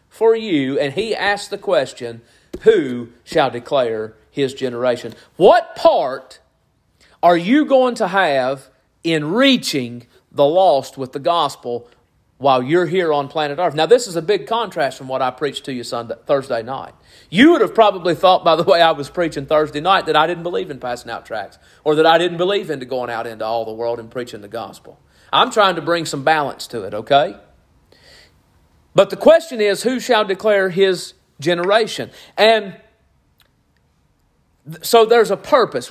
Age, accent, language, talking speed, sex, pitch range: 40-59, American, English, 180 wpm, male, 130-195 Hz